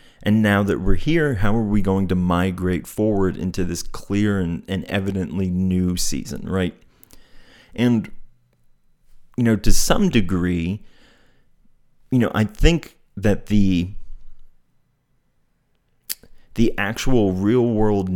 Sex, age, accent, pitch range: male, 30-49, American, 90-110 Hz